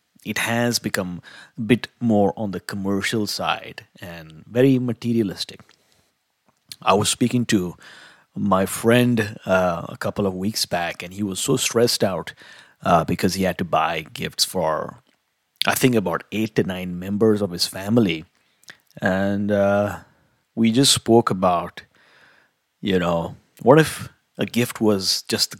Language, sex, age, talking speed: English, male, 30-49, 150 wpm